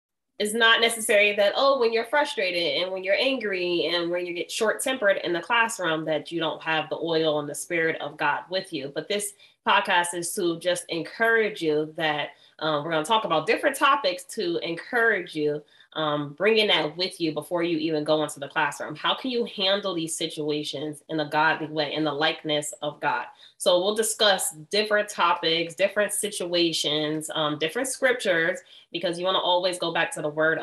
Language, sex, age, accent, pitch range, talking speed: English, female, 20-39, American, 155-205 Hz, 195 wpm